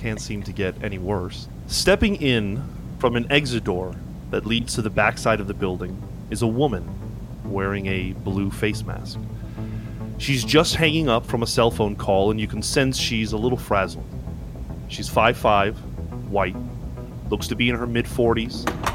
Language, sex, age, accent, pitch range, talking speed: English, male, 30-49, American, 100-120 Hz, 170 wpm